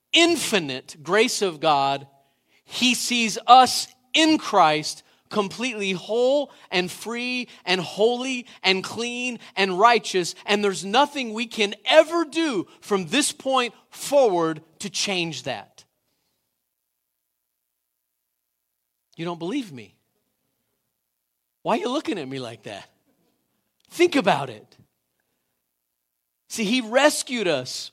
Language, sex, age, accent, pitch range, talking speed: English, male, 40-59, American, 155-230 Hz, 110 wpm